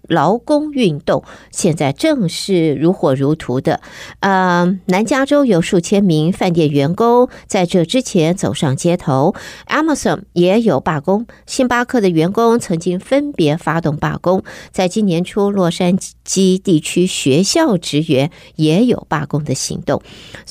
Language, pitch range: Chinese, 165-225 Hz